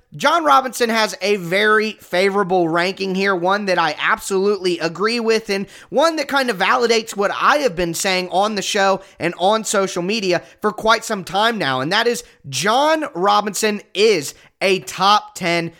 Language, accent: English, American